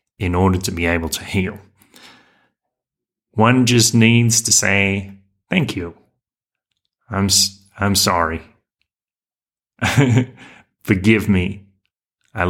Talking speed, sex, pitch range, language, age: 95 wpm, male, 90-105 Hz, English, 30-49